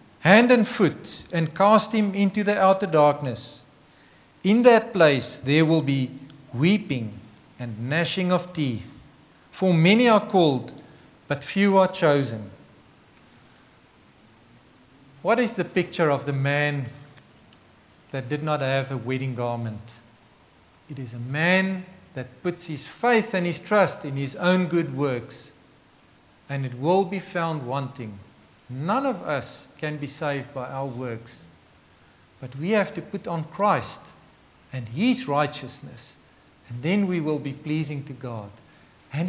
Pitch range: 130-185 Hz